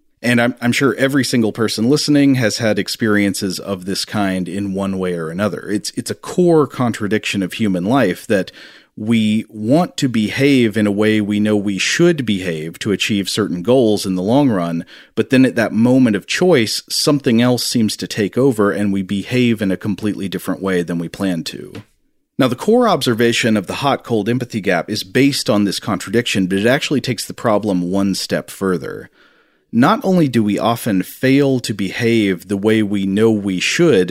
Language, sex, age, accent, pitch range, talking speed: English, male, 40-59, American, 95-125 Hz, 195 wpm